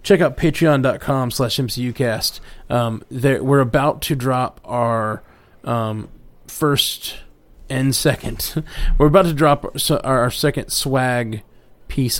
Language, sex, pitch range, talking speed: English, male, 120-150 Hz, 125 wpm